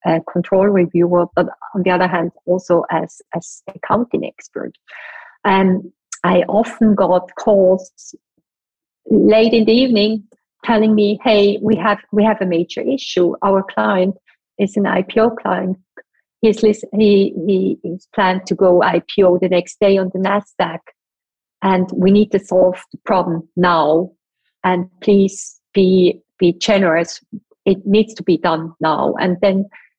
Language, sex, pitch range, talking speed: English, female, 180-210 Hz, 150 wpm